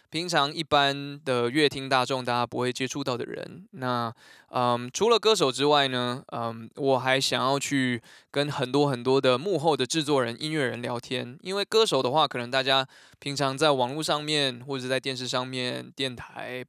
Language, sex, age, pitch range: Chinese, male, 20-39, 130-155 Hz